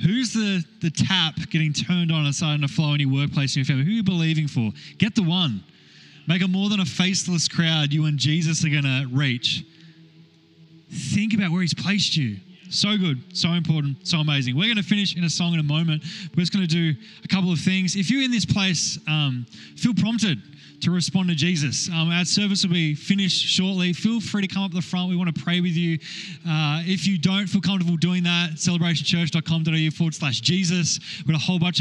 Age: 20-39